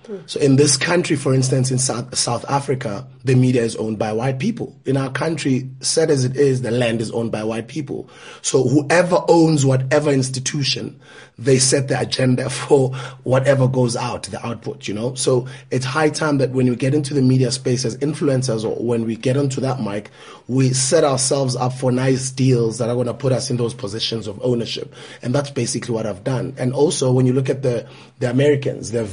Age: 30-49